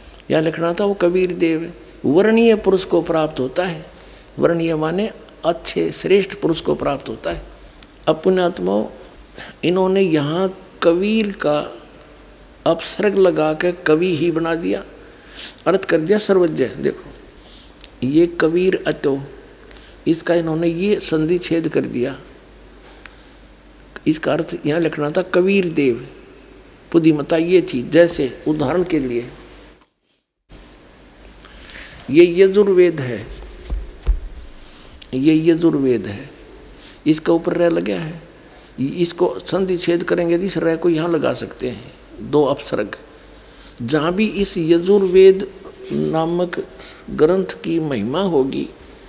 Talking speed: 115 wpm